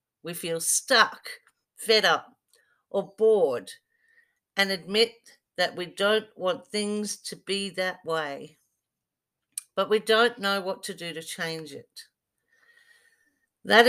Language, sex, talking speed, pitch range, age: English, female, 125 wpm, 180-255 Hz, 50-69